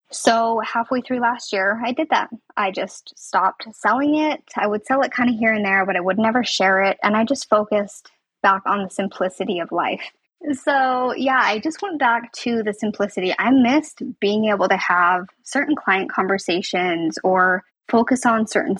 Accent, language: American, English